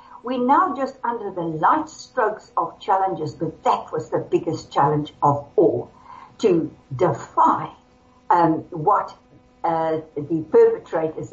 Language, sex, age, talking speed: English, female, 60-79, 125 wpm